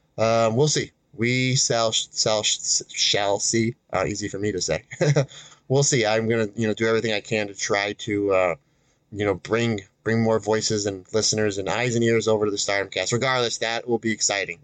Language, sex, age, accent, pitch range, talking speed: English, male, 30-49, American, 100-120 Hz, 200 wpm